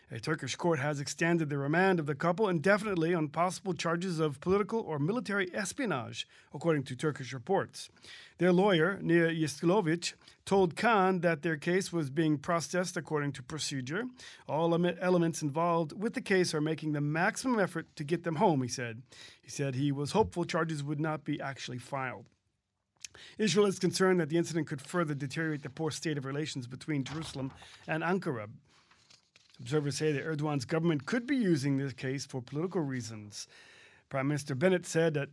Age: 40-59